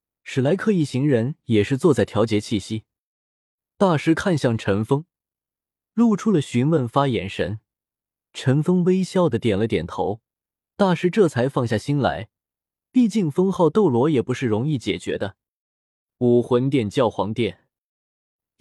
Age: 20-39